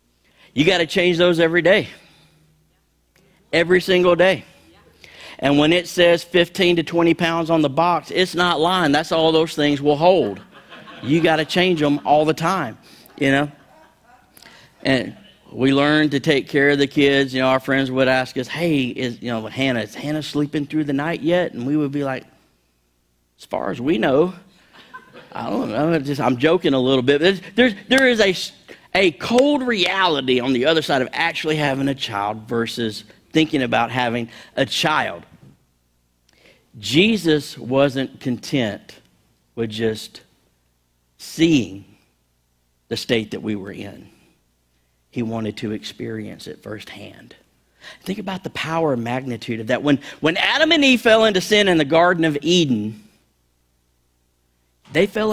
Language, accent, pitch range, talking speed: English, American, 110-165 Hz, 165 wpm